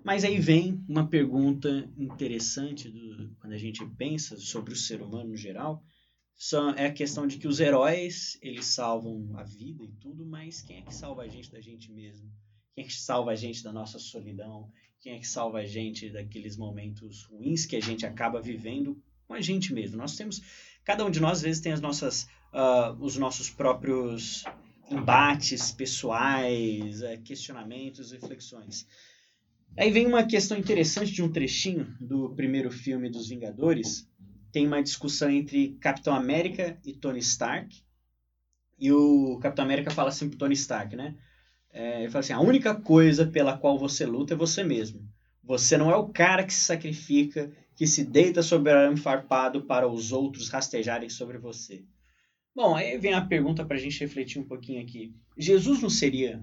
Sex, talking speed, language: male, 170 wpm, Portuguese